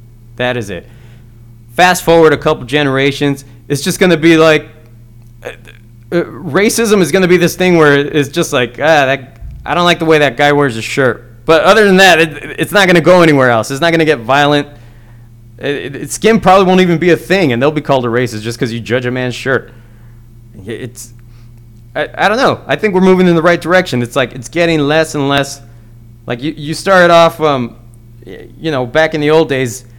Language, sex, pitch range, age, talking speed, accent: English, male, 115-165 Hz, 20-39, 215 wpm, American